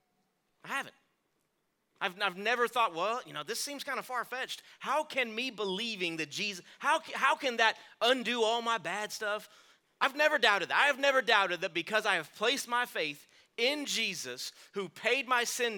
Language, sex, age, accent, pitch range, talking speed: English, male, 30-49, American, 135-215 Hz, 190 wpm